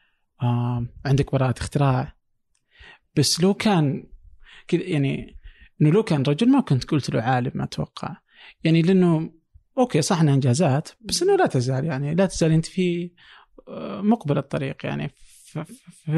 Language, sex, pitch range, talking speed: Arabic, male, 135-180 Hz, 140 wpm